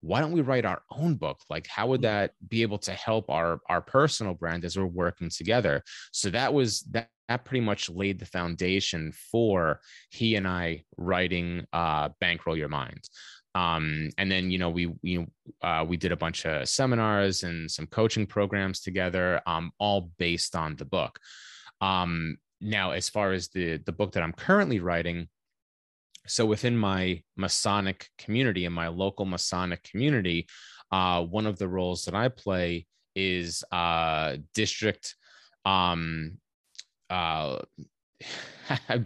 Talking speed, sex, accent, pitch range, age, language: 160 wpm, male, American, 85-110 Hz, 30-49, English